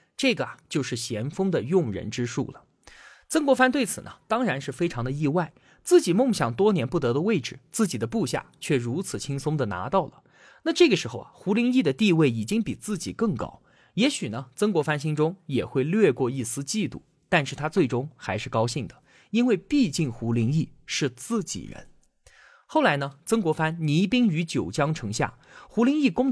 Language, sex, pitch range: Chinese, male, 130-205 Hz